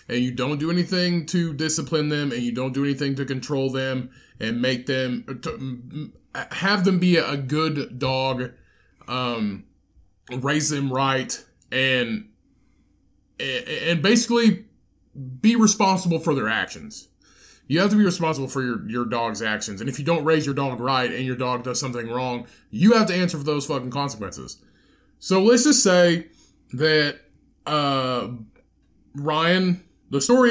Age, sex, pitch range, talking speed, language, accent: 20-39, male, 125-160 Hz, 155 wpm, English, American